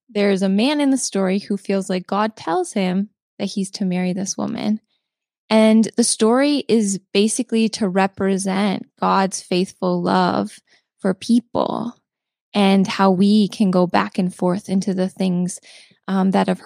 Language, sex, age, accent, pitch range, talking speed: English, female, 10-29, American, 195-230 Hz, 160 wpm